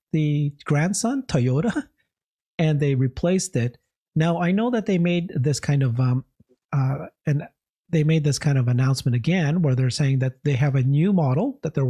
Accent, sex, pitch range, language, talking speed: American, male, 130-170 Hz, English, 185 wpm